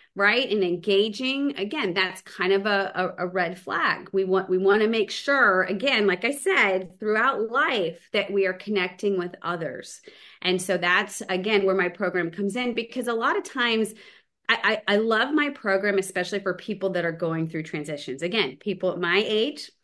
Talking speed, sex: 195 wpm, female